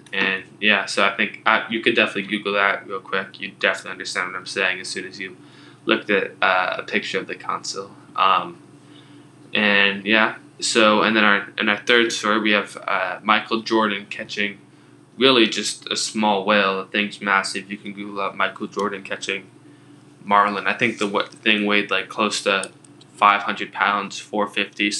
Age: 10-29